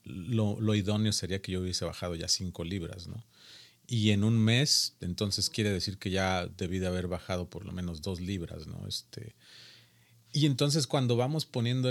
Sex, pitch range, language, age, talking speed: male, 90-110 Hz, Spanish, 40-59, 185 wpm